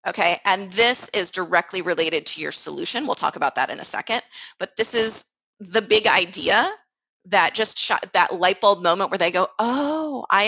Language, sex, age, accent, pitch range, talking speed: English, female, 30-49, American, 180-225 Hz, 195 wpm